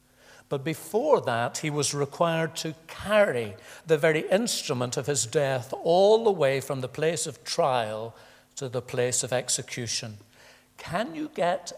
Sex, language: male, English